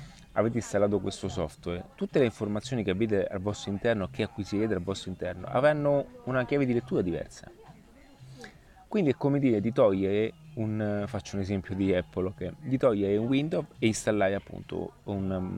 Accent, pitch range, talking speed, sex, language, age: native, 100-130 Hz, 170 wpm, male, Italian, 30-49